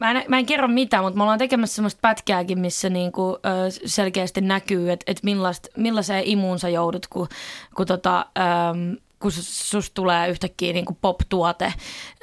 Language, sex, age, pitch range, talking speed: Finnish, female, 20-39, 185-225 Hz, 140 wpm